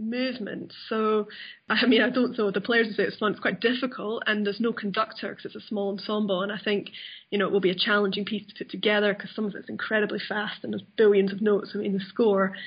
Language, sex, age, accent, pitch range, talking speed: English, female, 10-29, British, 200-220 Hz, 250 wpm